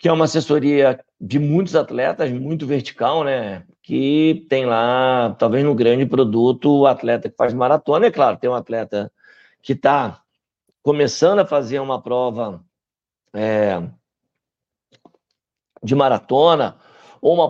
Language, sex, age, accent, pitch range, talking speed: Portuguese, male, 50-69, Brazilian, 135-205 Hz, 130 wpm